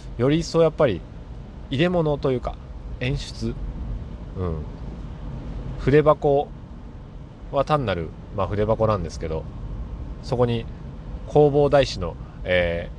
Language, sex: Japanese, male